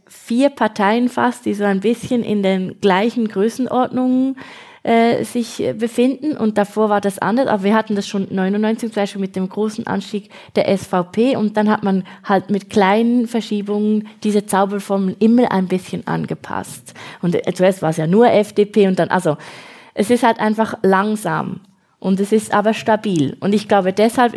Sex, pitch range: female, 190-220 Hz